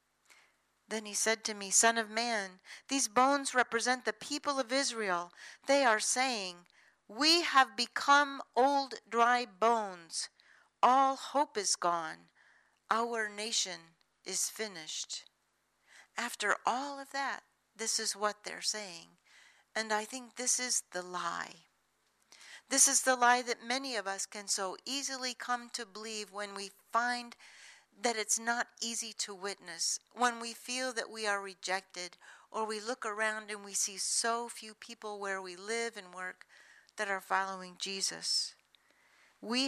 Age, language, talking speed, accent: 50-69, English, 150 wpm, American